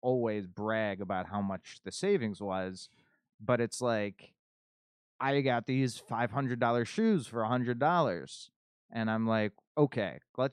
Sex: male